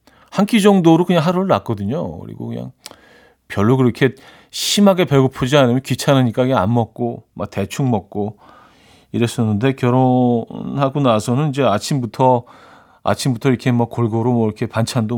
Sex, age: male, 40-59